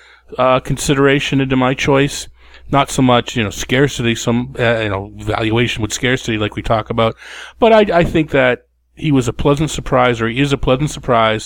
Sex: male